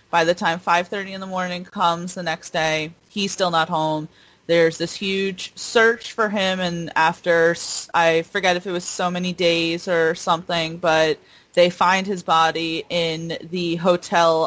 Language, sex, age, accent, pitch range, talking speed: English, female, 30-49, American, 170-215 Hz, 170 wpm